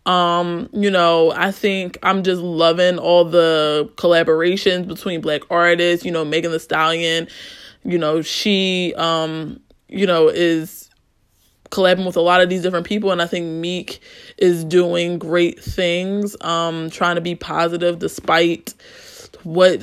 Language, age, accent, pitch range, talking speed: English, 20-39, American, 165-185 Hz, 150 wpm